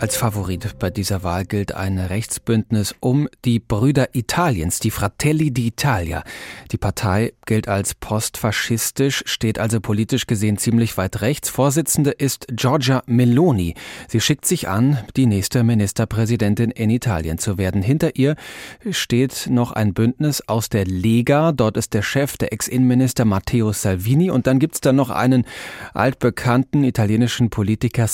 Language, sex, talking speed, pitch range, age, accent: German, male, 145 wpm, 105-130 Hz, 30-49, German